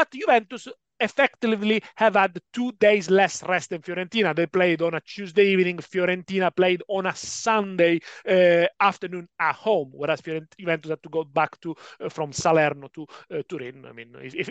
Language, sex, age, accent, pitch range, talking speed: English, male, 40-59, Italian, 175-220 Hz, 180 wpm